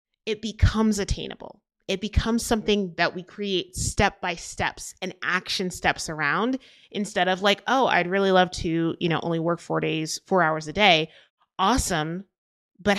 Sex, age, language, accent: female, 30-49, English, American